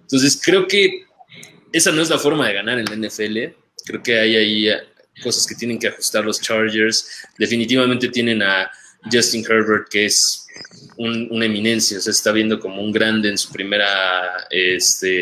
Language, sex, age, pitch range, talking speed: Spanish, male, 20-39, 110-140 Hz, 175 wpm